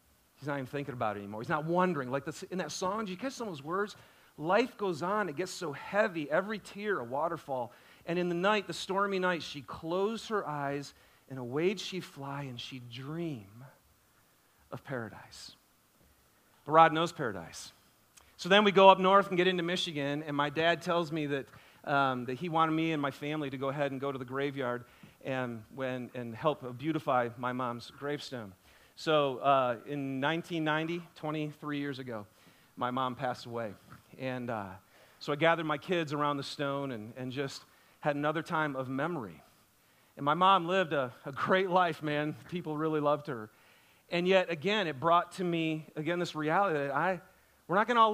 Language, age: English, 40-59